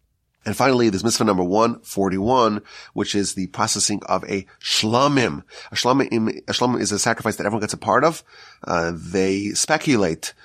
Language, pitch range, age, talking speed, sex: English, 100-135 Hz, 30-49, 160 wpm, male